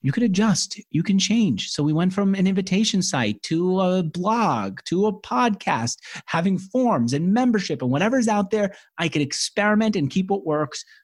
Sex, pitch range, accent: male, 125-195 Hz, American